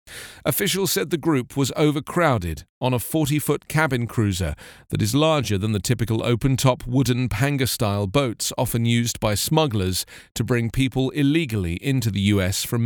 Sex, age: male, 40-59